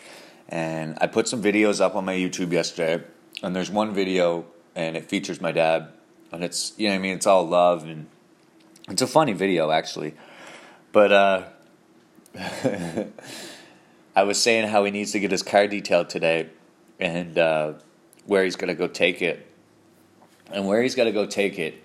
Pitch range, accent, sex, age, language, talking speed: 85-105 Hz, American, male, 30-49, English, 180 wpm